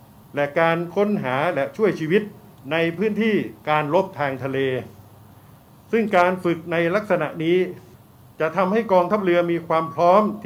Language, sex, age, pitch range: Thai, male, 60-79, 140-180 Hz